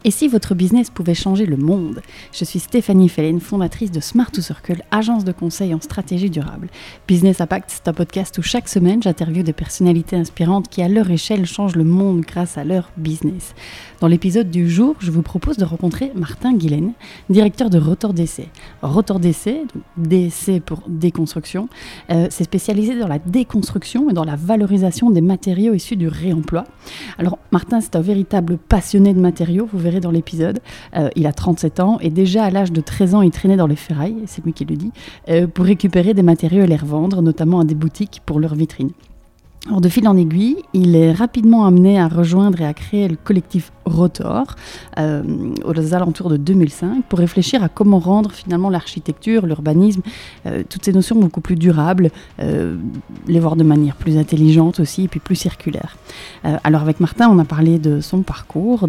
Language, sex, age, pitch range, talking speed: French, female, 30-49, 165-195 Hz, 190 wpm